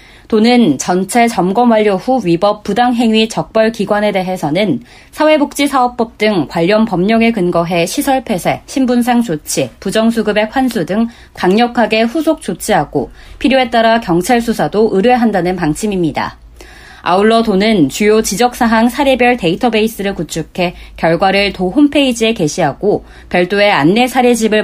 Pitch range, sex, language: 175-235 Hz, female, Korean